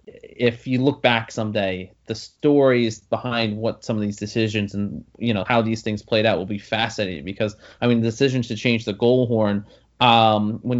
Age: 20-39